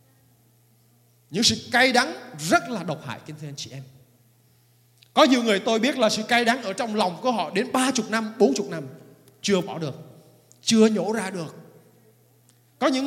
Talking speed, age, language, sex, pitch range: 195 wpm, 20-39, Vietnamese, male, 150-250 Hz